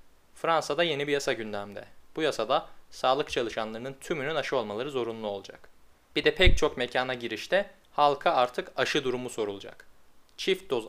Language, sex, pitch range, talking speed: Turkish, male, 110-145 Hz, 150 wpm